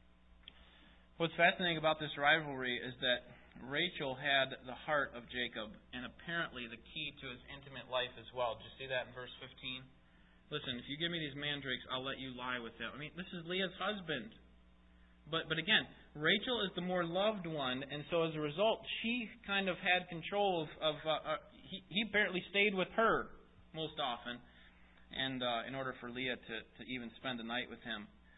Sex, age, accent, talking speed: male, 30-49, American, 195 wpm